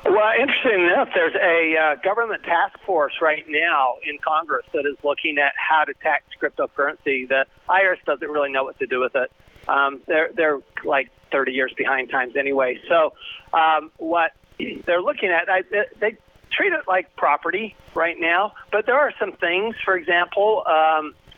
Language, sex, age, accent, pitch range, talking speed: English, male, 40-59, American, 150-190 Hz, 175 wpm